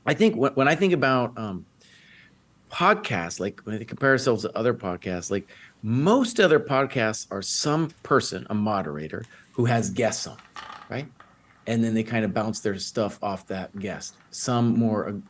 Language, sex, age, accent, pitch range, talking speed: English, male, 40-59, American, 110-125 Hz, 170 wpm